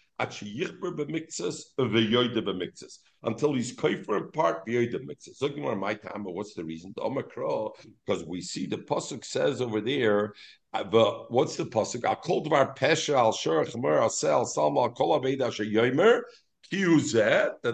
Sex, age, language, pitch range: male, 50-69, English, 135-220 Hz